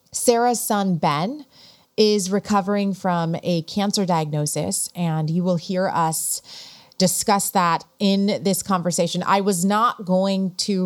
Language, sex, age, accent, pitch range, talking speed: English, female, 30-49, American, 165-195 Hz, 135 wpm